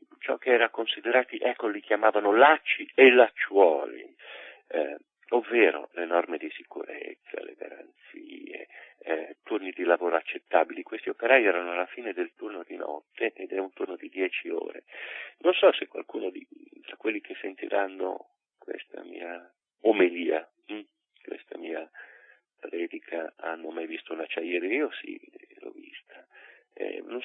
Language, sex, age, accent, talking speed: Italian, male, 40-59, native, 145 wpm